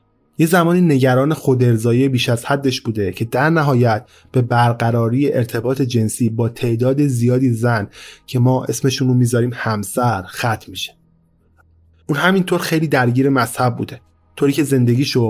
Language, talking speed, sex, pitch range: Persian, 135 wpm, male, 110-135 Hz